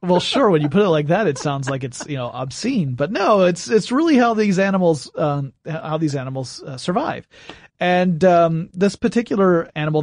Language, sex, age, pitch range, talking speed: English, male, 30-49, 135-180 Hz, 205 wpm